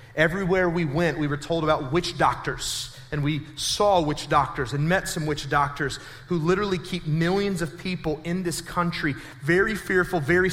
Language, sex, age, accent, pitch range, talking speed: English, male, 30-49, American, 165-210 Hz, 175 wpm